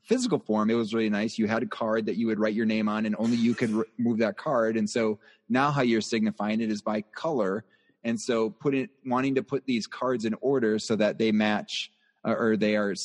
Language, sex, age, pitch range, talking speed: English, male, 30-49, 105-125 Hz, 240 wpm